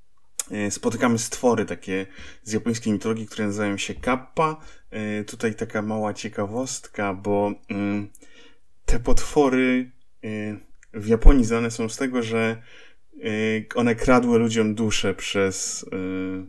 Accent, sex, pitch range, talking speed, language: native, male, 100-115 Hz, 105 wpm, Polish